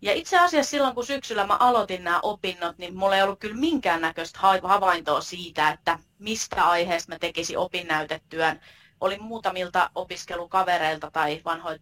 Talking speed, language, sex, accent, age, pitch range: 145 wpm, Finnish, female, native, 30-49, 165-205 Hz